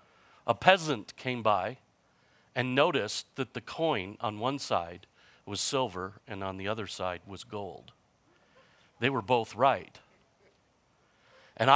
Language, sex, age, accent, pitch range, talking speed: English, male, 50-69, American, 105-145 Hz, 135 wpm